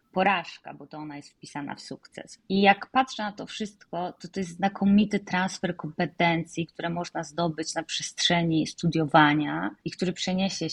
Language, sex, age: Polish, female, 20-39